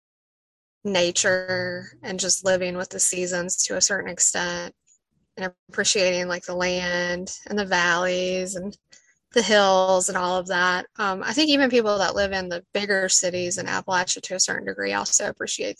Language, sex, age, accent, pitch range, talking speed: English, female, 20-39, American, 180-200 Hz, 170 wpm